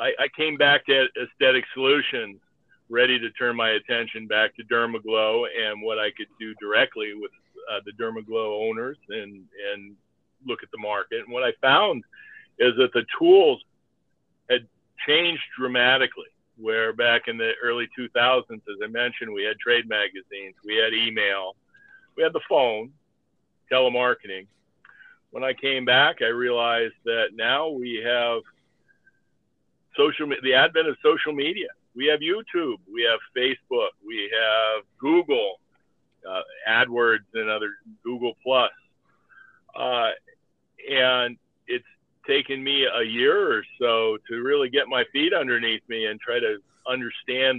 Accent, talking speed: American, 145 wpm